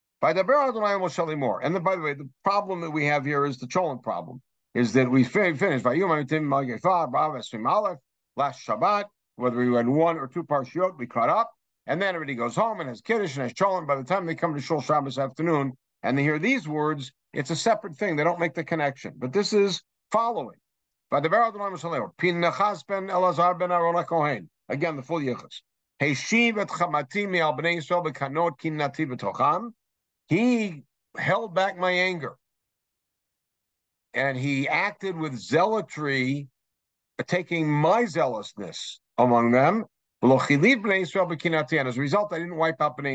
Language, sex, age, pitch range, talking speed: English, male, 60-79, 135-185 Hz, 145 wpm